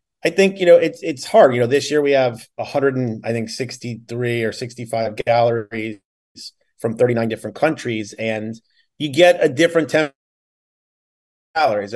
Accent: American